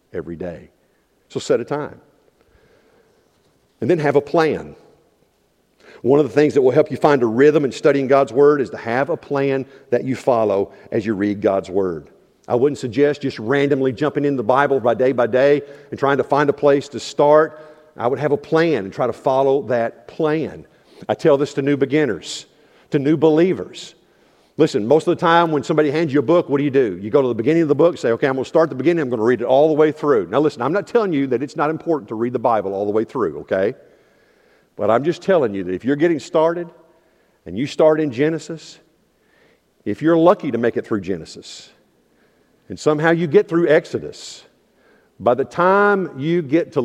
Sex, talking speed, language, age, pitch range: male, 225 wpm, English, 50-69, 130-160 Hz